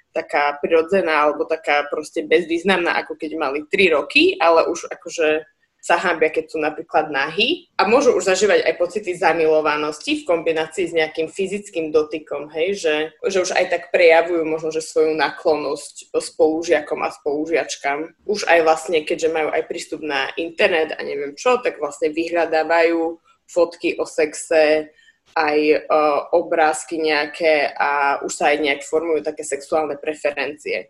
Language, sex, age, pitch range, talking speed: Slovak, female, 20-39, 155-200 Hz, 150 wpm